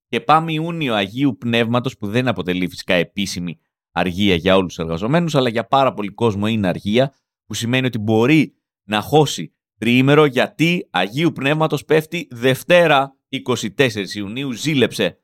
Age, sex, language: 30-49, male, Greek